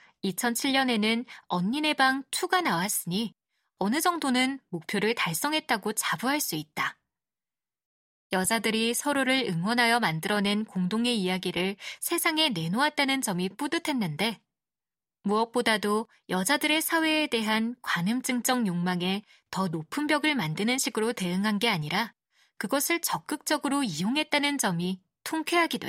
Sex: female